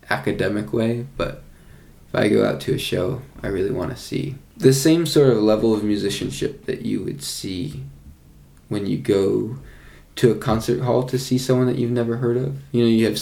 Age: 20-39